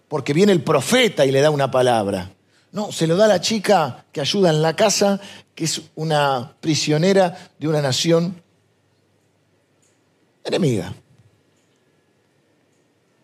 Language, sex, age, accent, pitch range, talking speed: Spanish, male, 50-69, Argentinian, 145-205 Hz, 130 wpm